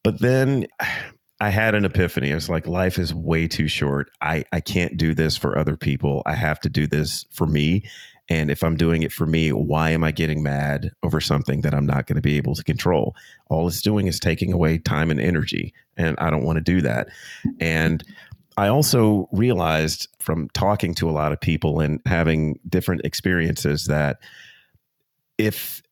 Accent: American